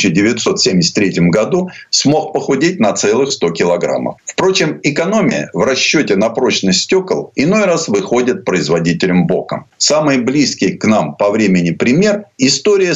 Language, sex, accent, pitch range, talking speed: Russian, male, native, 105-175 Hz, 130 wpm